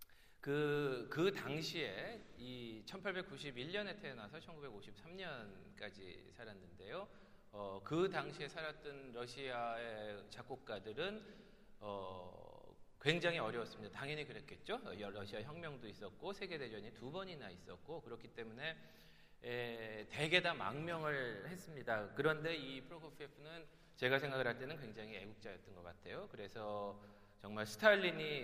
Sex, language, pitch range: male, Korean, 110-160 Hz